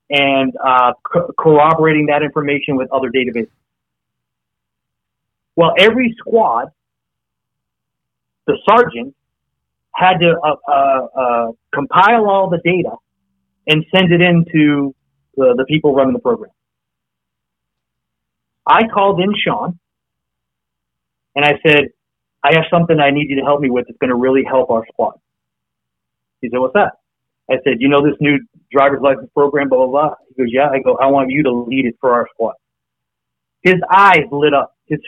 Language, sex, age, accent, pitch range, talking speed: English, male, 30-49, American, 120-160 Hz, 160 wpm